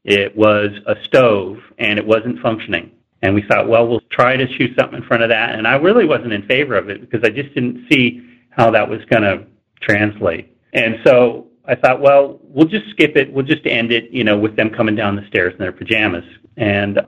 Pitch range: 105-125 Hz